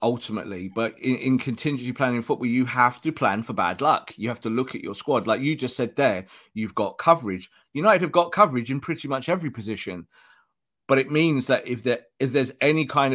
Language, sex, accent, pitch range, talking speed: English, male, British, 120-160 Hz, 220 wpm